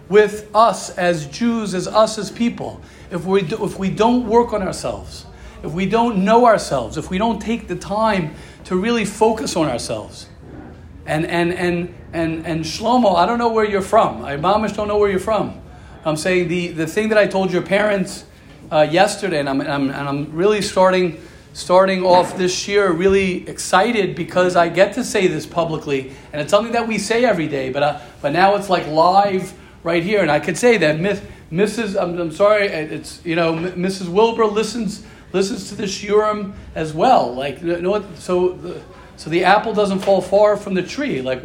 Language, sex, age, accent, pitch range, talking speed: English, male, 40-59, American, 170-210 Hz, 200 wpm